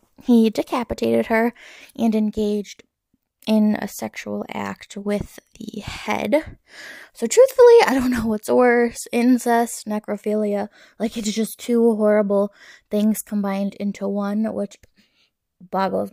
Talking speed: 120 wpm